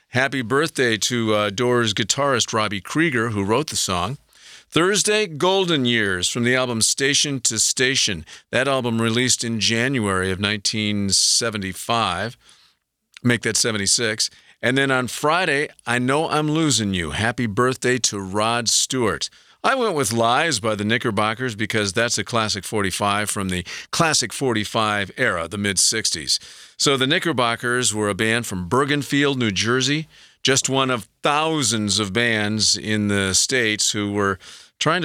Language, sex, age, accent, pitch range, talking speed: English, male, 50-69, American, 105-130 Hz, 145 wpm